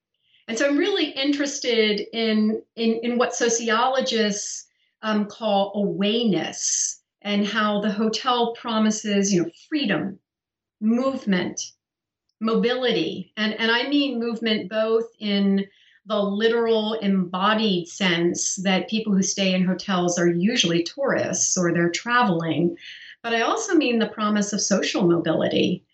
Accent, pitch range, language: American, 190-240 Hz, English